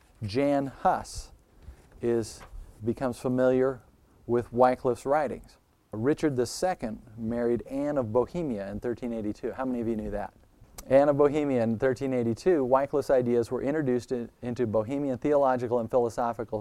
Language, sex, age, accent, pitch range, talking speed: English, male, 40-59, American, 110-135 Hz, 135 wpm